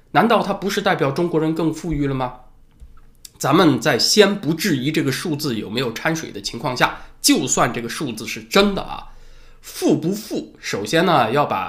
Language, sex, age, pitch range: Chinese, male, 20-39, 120-160 Hz